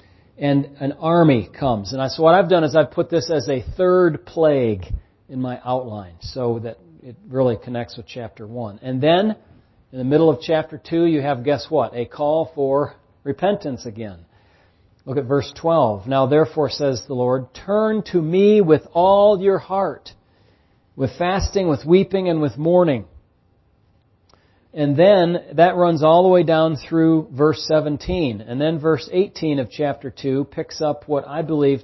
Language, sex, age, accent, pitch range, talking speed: English, male, 40-59, American, 120-160 Hz, 170 wpm